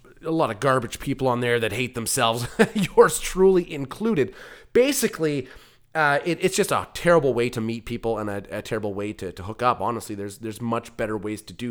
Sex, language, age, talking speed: male, English, 30-49, 205 wpm